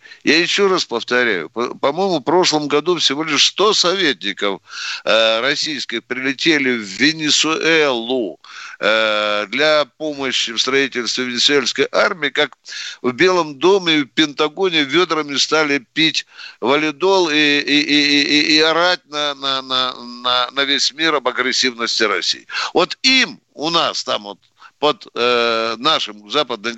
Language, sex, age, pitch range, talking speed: Russian, male, 60-79, 125-155 Hz, 130 wpm